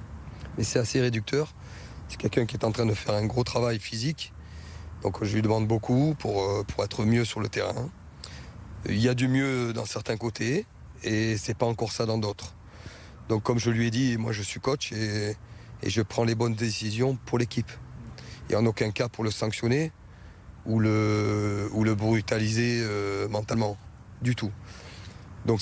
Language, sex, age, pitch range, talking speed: French, male, 30-49, 105-120 Hz, 185 wpm